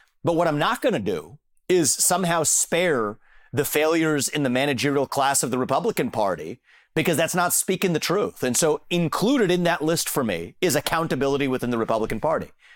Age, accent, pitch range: 40-59, American, 130-170 Hz